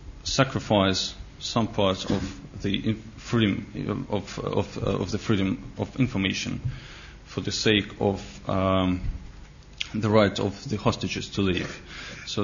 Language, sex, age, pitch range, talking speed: English, male, 30-49, 95-110 Hz, 125 wpm